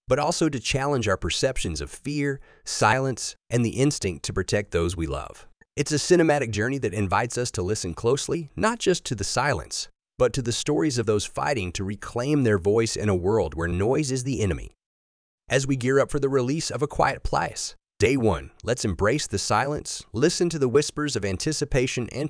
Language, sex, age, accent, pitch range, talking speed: English, male, 30-49, American, 105-140 Hz, 200 wpm